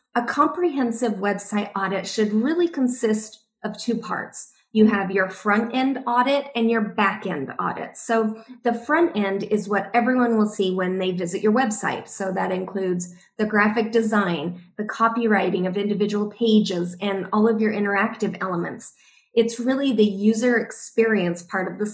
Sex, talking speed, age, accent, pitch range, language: female, 165 wpm, 30-49, American, 195-230 Hz, English